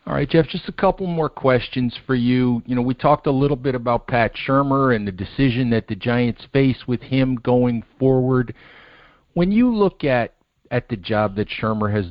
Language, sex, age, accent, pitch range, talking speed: English, male, 50-69, American, 105-130 Hz, 205 wpm